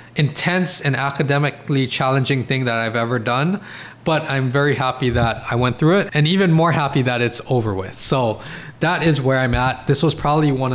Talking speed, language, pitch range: 200 wpm, English, 120-150 Hz